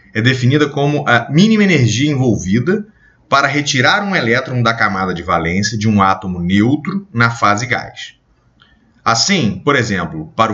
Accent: Brazilian